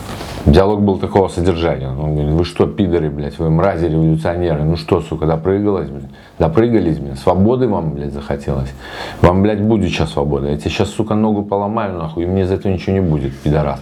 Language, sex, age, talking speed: Russian, male, 40-59, 190 wpm